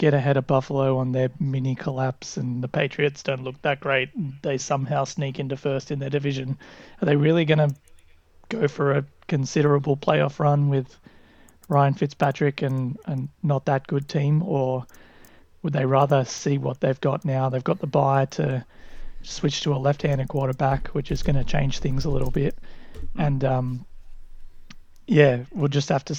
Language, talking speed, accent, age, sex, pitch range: English, 180 wpm, Australian, 30-49, male, 130-155 Hz